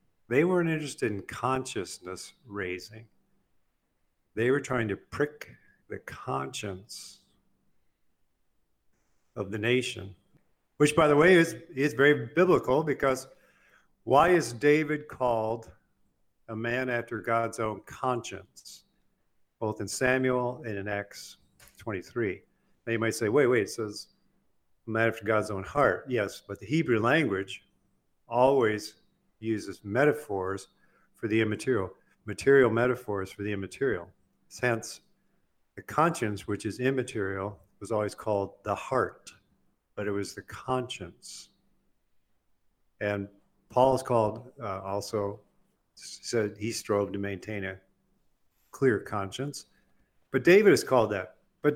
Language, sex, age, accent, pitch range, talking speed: English, male, 50-69, American, 100-130 Hz, 125 wpm